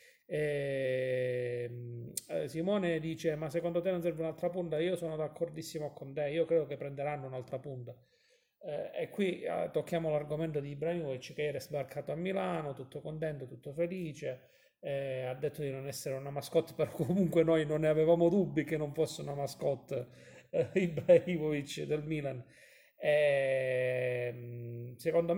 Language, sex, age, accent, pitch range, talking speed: Italian, male, 40-59, native, 135-170 Hz, 145 wpm